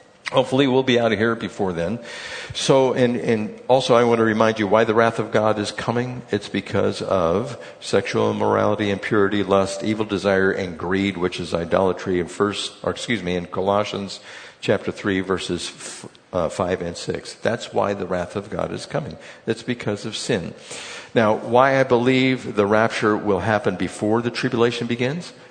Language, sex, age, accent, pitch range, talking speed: English, male, 50-69, American, 105-125 Hz, 180 wpm